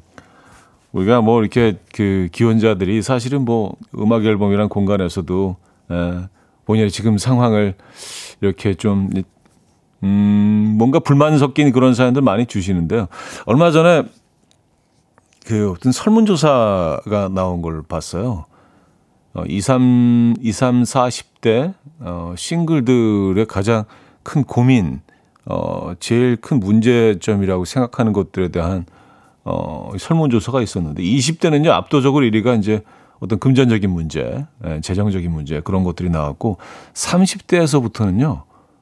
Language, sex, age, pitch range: Korean, male, 40-59, 95-130 Hz